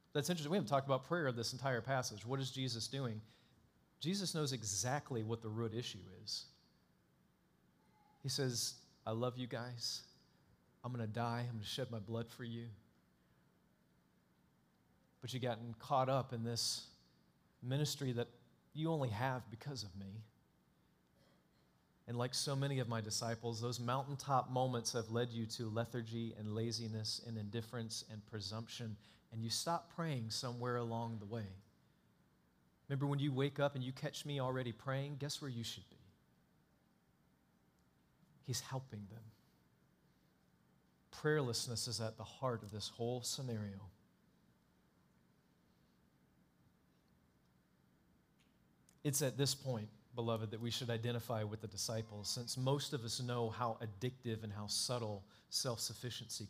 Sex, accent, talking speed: male, American, 145 wpm